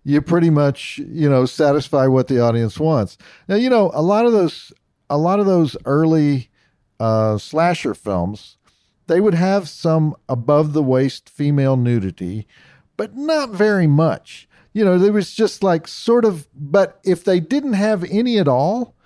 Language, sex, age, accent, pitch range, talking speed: English, male, 50-69, American, 120-175 Hz, 165 wpm